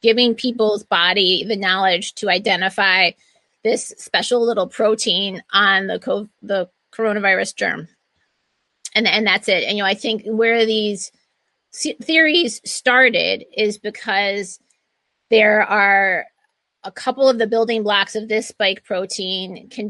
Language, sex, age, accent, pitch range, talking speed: English, female, 30-49, American, 195-230 Hz, 135 wpm